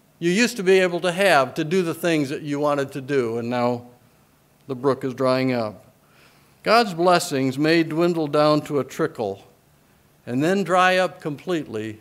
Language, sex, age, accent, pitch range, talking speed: English, male, 60-79, American, 135-180 Hz, 180 wpm